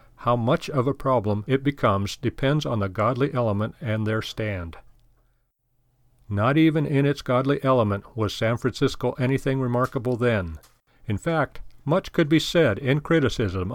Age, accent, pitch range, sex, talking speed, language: 40-59, American, 110-145 Hz, male, 155 wpm, English